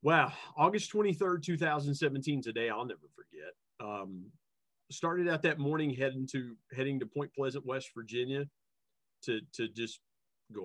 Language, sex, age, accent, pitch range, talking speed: English, male, 40-59, American, 120-145 Hz, 150 wpm